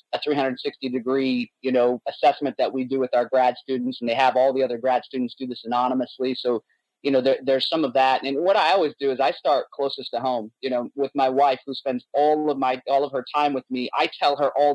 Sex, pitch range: male, 130-155 Hz